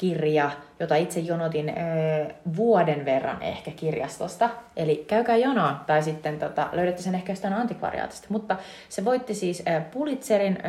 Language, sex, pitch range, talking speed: Finnish, female, 155-190 Hz, 145 wpm